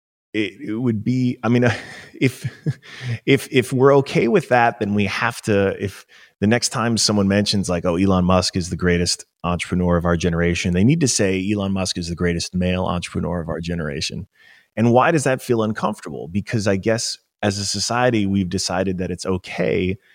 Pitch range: 90-105 Hz